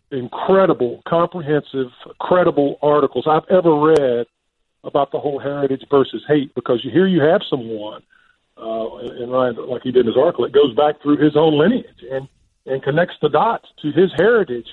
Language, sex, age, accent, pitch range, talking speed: English, male, 40-59, American, 125-155 Hz, 175 wpm